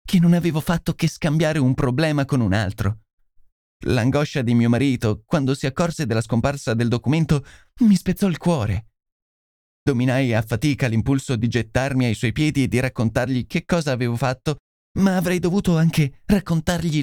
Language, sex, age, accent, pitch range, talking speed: Italian, male, 30-49, native, 115-165 Hz, 165 wpm